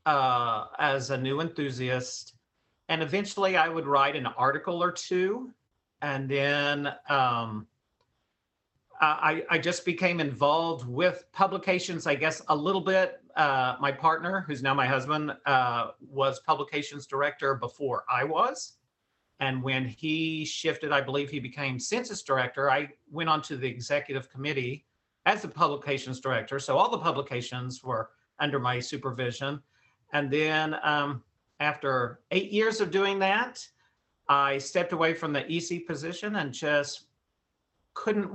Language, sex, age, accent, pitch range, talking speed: English, male, 50-69, American, 135-165 Hz, 140 wpm